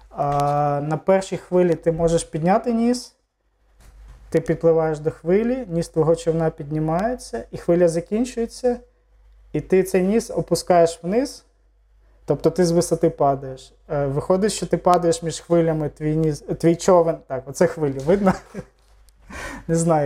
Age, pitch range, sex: 20-39, 145-180 Hz, male